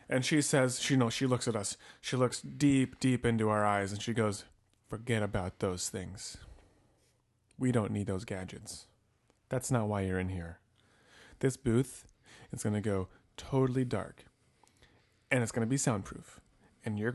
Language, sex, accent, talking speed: English, male, American, 170 wpm